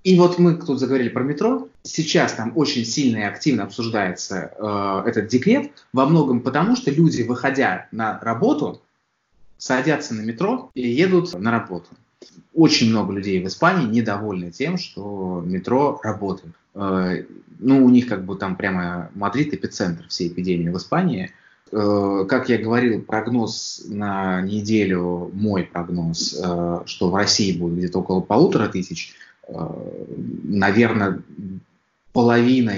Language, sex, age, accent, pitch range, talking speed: Russian, male, 20-39, native, 95-125 Hz, 135 wpm